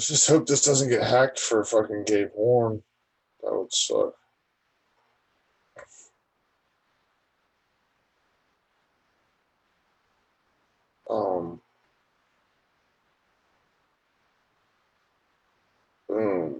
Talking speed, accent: 60 wpm, American